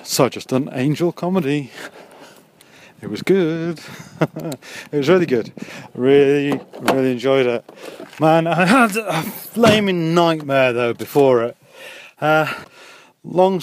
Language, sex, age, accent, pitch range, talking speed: English, male, 30-49, British, 125-170 Hz, 125 wpm